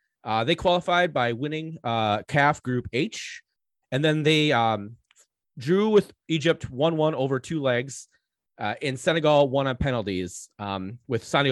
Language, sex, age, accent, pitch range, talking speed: English, male, 30-49, American, 115-155 Hz, 150 wpm